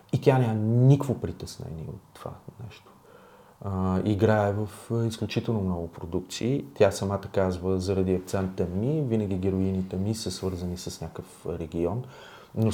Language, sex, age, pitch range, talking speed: Bulgarian, male, 30-49, 95-115 Hz, 135 wpm